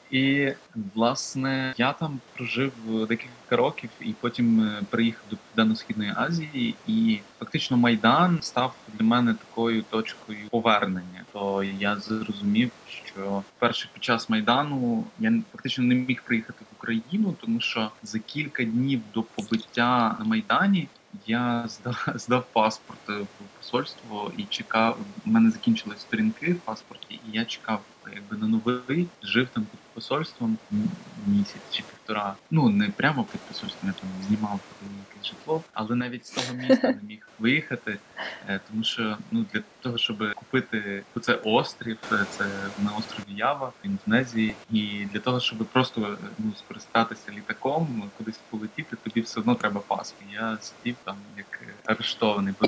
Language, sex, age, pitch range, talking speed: Ukrainian, male, 20-39, 110-175 Hz, 145 wpm